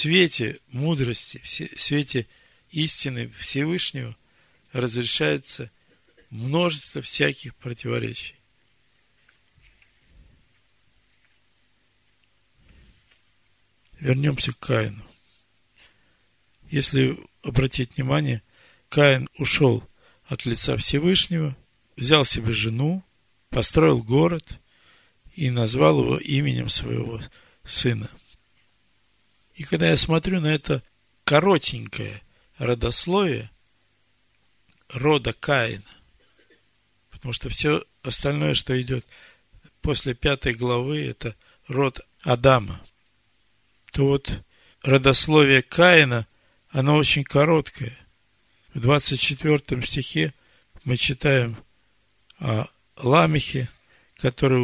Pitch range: 110-140 Hz